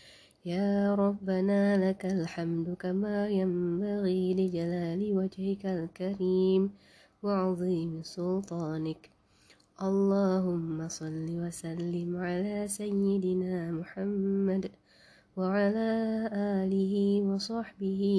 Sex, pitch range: female, 170-200 Hz